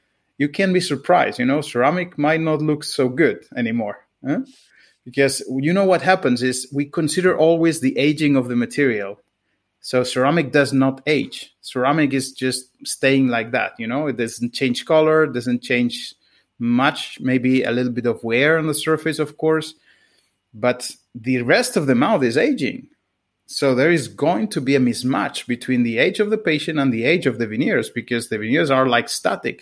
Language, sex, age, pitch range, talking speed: English, male, 30-49, 125-160 Hz, 190 wpm